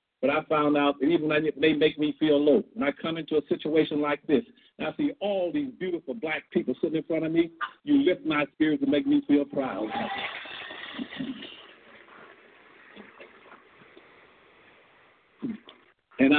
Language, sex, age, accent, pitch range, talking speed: English, male, 50-69, American, 145-200 Hz, 160 wpm